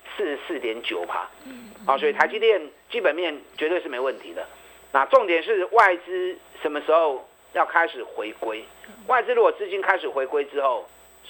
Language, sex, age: Chinese, male, 50-69